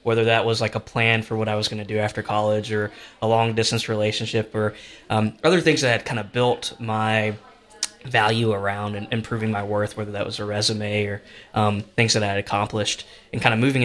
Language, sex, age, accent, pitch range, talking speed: English, male, 20-39, American, 105-115 Hz, 225 wpm